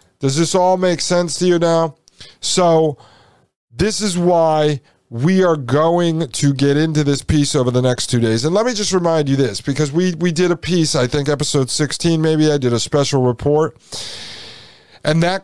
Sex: male